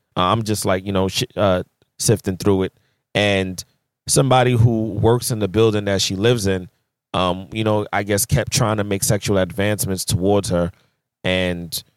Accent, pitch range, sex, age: American, 95-120 Hz, male, 20-39